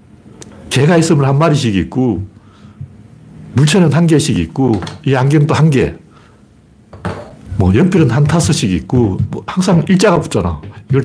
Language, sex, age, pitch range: Korean, male, 60-79, 105-160 Hz